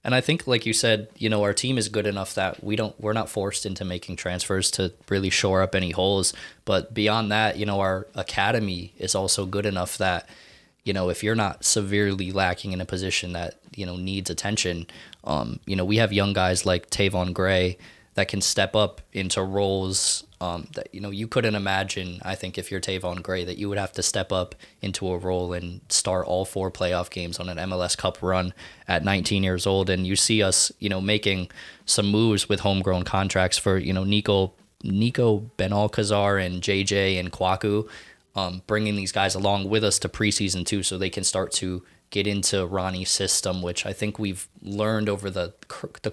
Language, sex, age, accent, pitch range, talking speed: English, male, 20-39, American, 90-105 Hz, 205 wpm